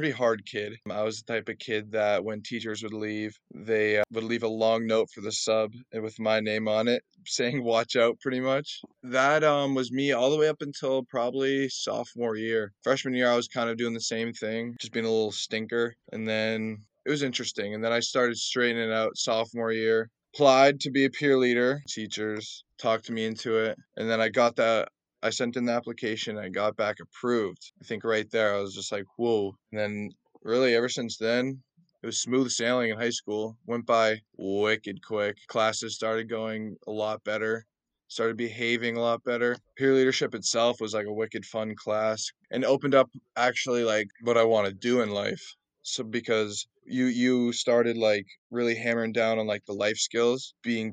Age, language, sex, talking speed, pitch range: 20-39, English, male, 205 wpm, 110-120 Hz